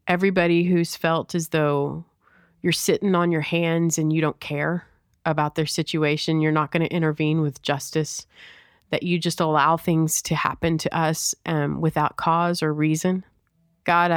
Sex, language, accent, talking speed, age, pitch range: female, English, American, 165 wpm, 30-49, 155-175 Hz